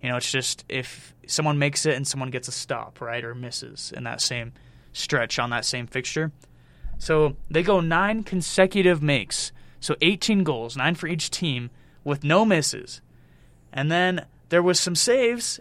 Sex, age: male, 20-39